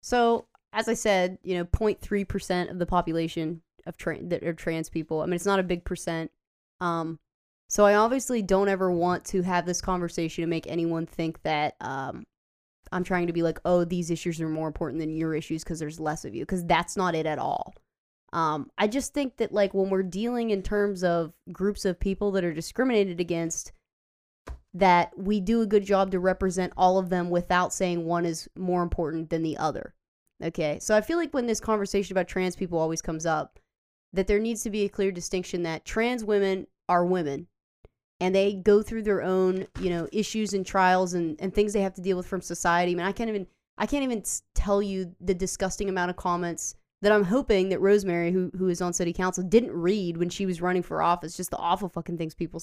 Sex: female